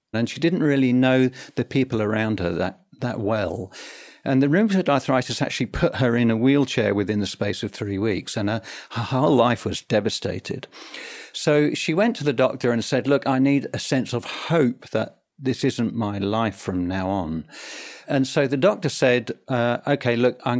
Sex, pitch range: male, 115-140 Hz